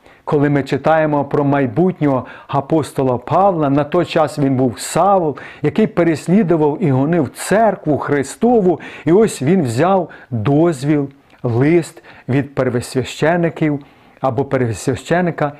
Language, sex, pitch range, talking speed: Ukrainian, male, 135-170 Hz, 110 wpm